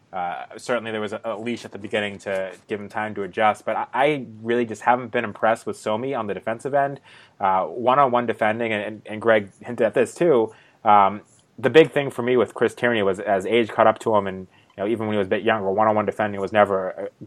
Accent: American